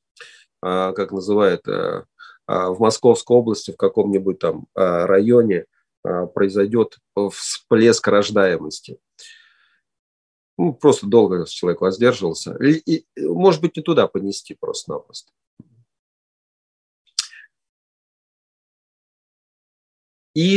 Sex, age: male, 40-59